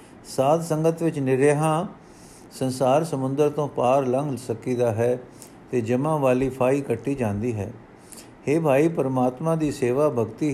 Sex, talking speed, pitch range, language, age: male, 135 wpm, 125-150 Hz, Punjabi, 50-69